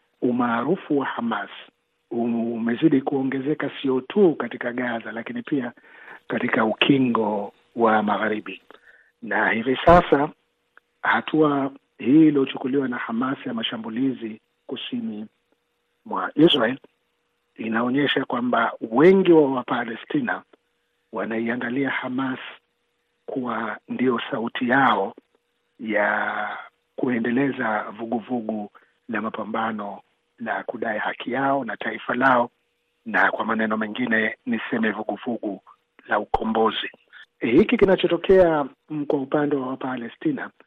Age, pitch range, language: 50-69, 115-140 Hz, Swahili